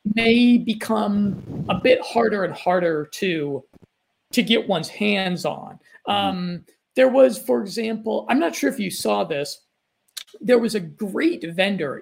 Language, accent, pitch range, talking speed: English, American, 180-225 Hz, 150 wpm